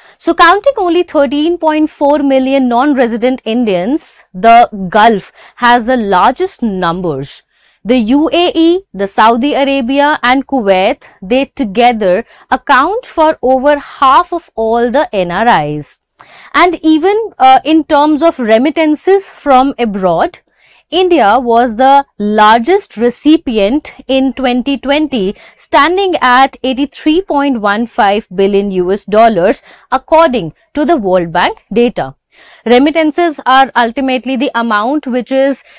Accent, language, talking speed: Indian, English, 110 wpm